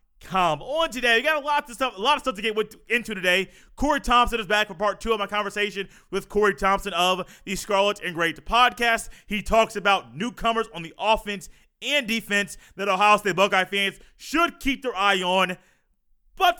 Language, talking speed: English, 205 wpm